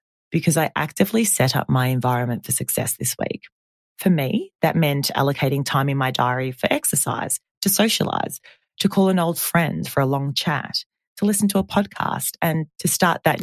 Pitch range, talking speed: 130-185 Hz, 190 wpm